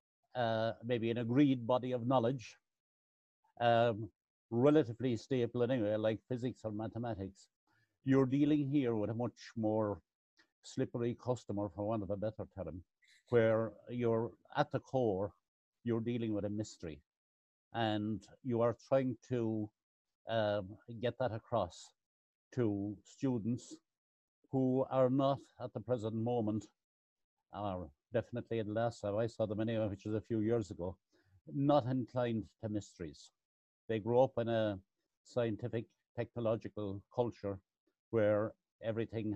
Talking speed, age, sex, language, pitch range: 135 wpm, 60-79, male, English, 105-120 Hz